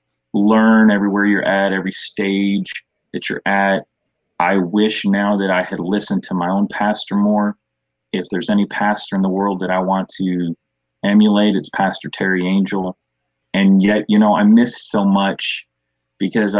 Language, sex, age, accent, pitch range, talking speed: English, male, 30-49, American, 95-110 Hz, 165 wpm